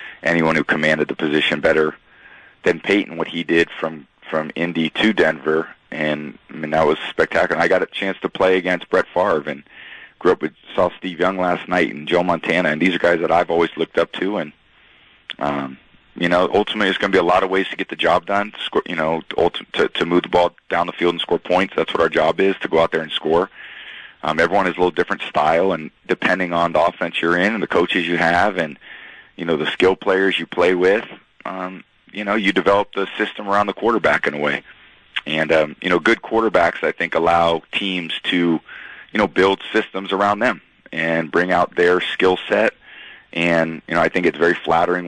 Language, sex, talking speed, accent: English, male, 225 wpm, American